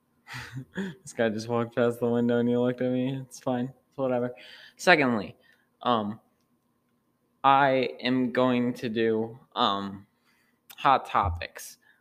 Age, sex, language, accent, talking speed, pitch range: 20-39, male, English, American, 130 wpm, 110-135 Hz